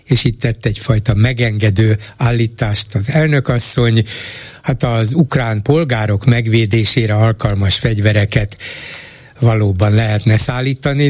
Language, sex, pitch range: Hungarian, male, 110-130 Hz